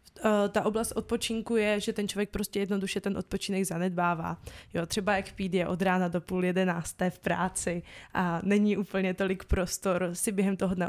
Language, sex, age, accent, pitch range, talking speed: Czech, female, 20-39, native, 185-210 Hz, 180 wpm